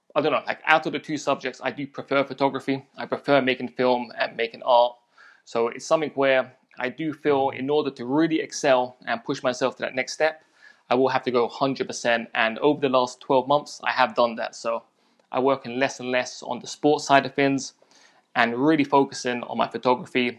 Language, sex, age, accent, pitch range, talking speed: English, male, 20-39, British, 125-140 Hz, 220 wpm